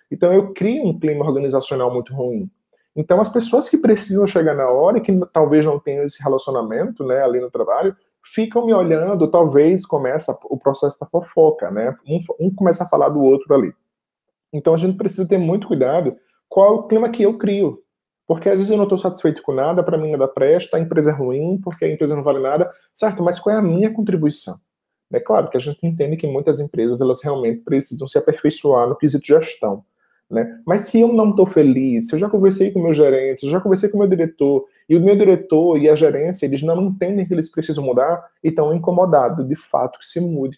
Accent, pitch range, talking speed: Brazilian, 150-200 Hz, 220 wpm